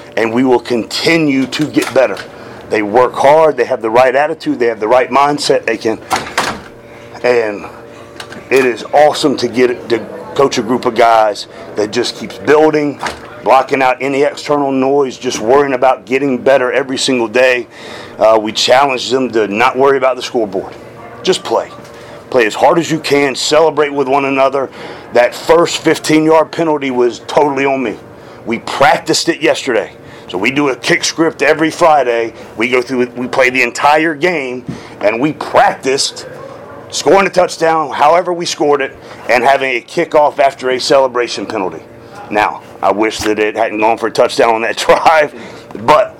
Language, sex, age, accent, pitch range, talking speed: English, male, 40-59, American, 120-150 Hz, 175 wpm